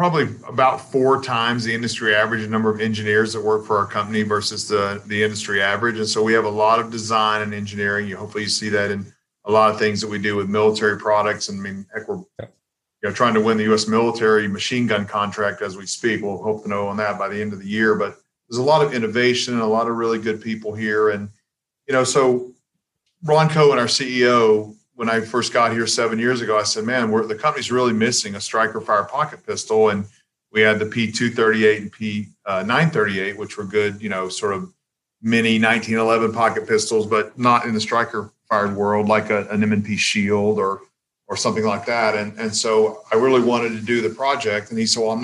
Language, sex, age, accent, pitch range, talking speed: English, male, 40-59, American, 105-120 Hz, 230 wpm